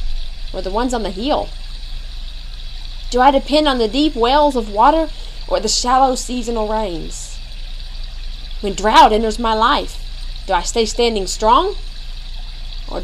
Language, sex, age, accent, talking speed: English, female, 20-39, American, 145 wpm